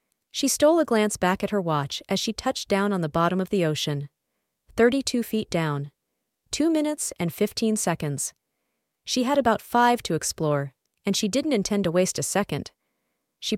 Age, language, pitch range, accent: 30-49, English, 160-235 Hz, American